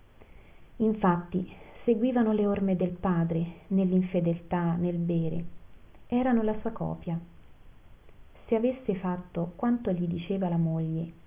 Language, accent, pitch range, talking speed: Italian, native, 170-210 Hz, 110 wpm